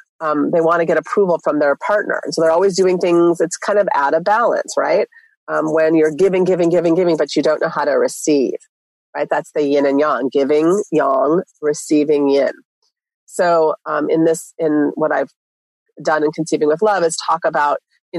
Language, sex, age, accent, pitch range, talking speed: English, female, 30-49, American, 150-180 Hz, 205 wpm